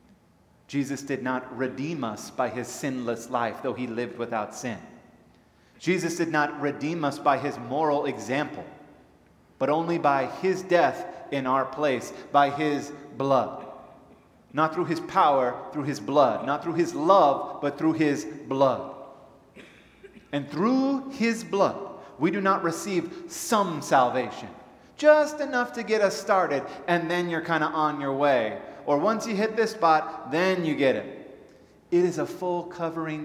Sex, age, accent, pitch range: male, 30-49, American, 125-170 Hz